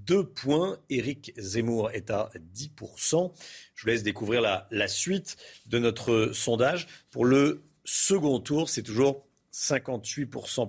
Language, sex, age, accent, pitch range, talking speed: French, male, 50-69, French, 110-145 Hz, 135 wpm